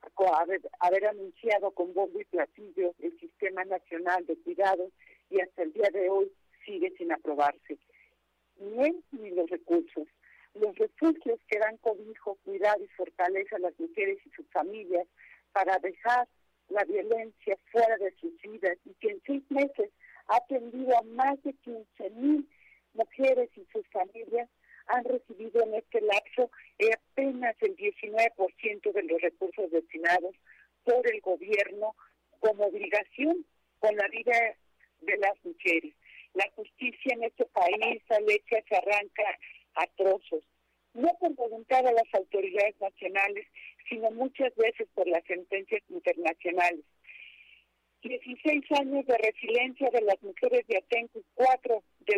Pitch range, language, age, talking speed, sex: 195-270 Hz, Spanish, 50-69, 135 wpm, female